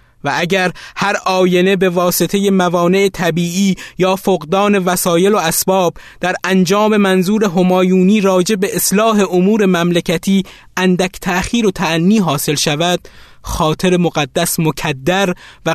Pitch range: 165-200 Hz